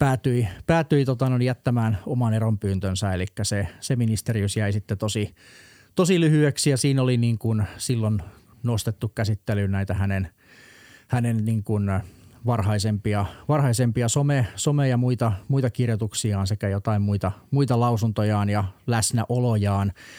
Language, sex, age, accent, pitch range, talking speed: Finnish, male, 30-49, native, 105-125 Hz, 130 wpm